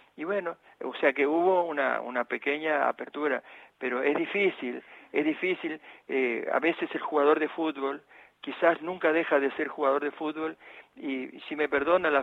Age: 50-69